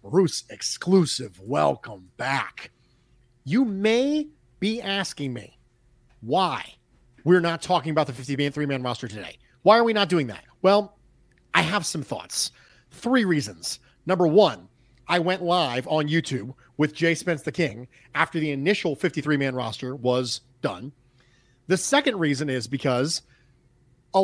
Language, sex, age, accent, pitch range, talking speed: English, male, 40-59, American, 130-205 Hz, 150 wpm